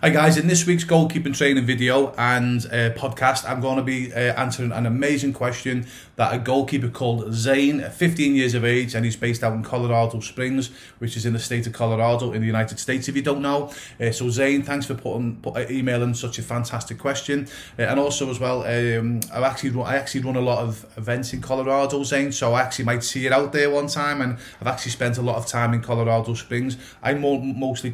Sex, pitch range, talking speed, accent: male, 115-135 Hz, 230 wpm, British